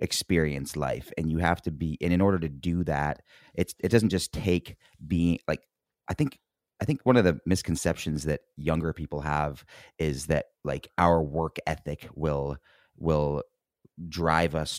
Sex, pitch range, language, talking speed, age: male, 80-95 Hz, English, 170 wpm, 30-49